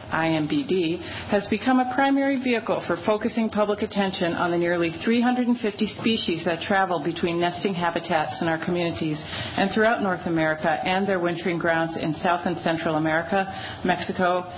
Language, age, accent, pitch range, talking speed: English, 40-59, American, 170-210 Hz, 150 wpm